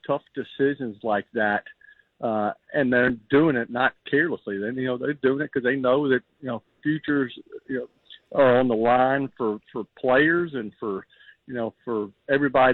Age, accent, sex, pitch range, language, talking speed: 50-69, American, male, 120-145 Hz, English, 185 wpm